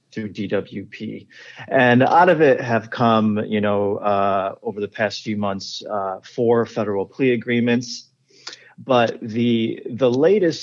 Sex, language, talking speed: male, English, 140 wpm